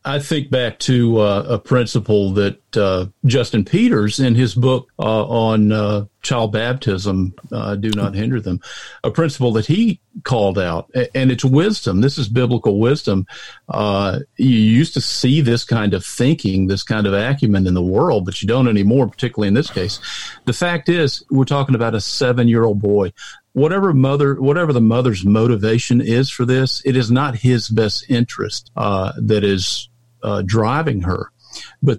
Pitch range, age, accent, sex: 105-135 Hz, 50-69, American, male